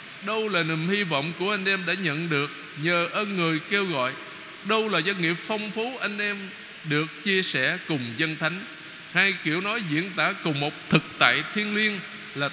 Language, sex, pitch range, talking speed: Vietnamese, male, 155-195 Hz, 200 wpm